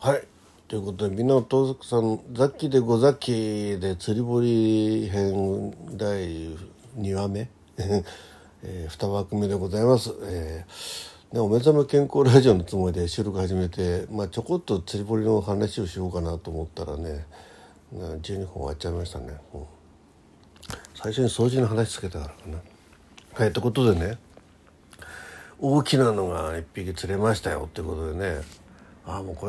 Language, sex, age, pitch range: Japanese, male, 60-79, 85-115 Hz